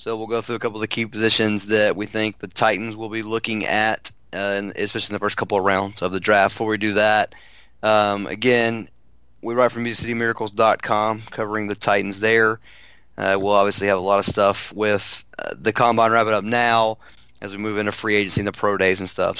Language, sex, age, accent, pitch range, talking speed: English, male, 30-49, American, 100-110 Hz, 225 wpm